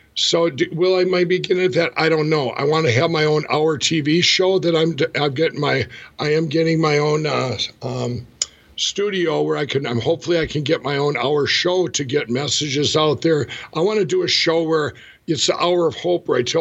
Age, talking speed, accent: 60-79, 230 wpm, American